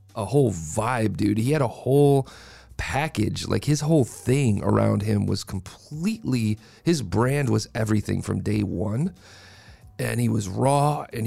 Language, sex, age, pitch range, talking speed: English, male, 40-59, 100-130 Hz, 155 wpm